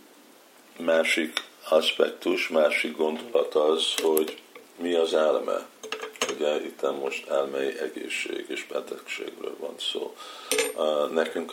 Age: 50-69